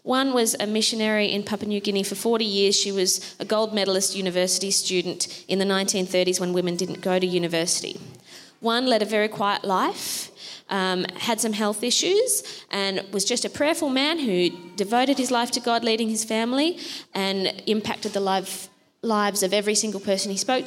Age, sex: 20-39, female